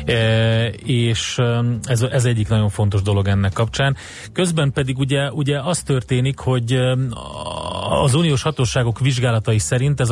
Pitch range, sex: 110-130 Hz, male